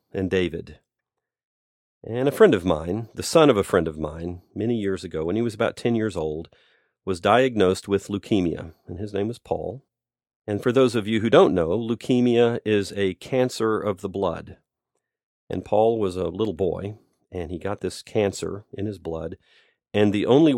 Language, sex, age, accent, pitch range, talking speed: English, male, 40-59, American, 90-110 Hz, 190 wpm